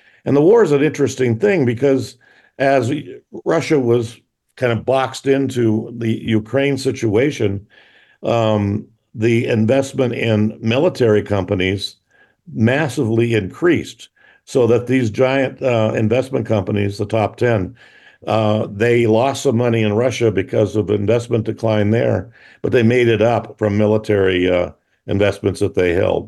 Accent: American